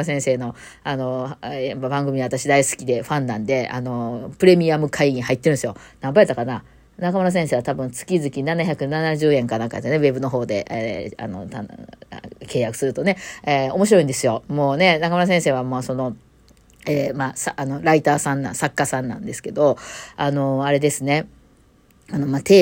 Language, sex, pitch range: Japanese, female, 130-165 Hz